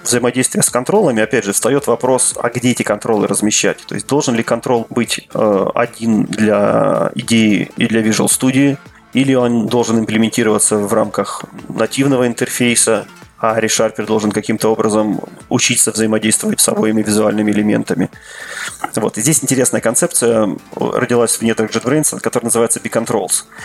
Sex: male